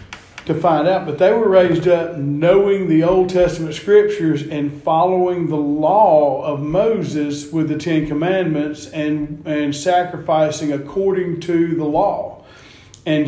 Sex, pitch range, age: male, 150-180 Hz, 40-59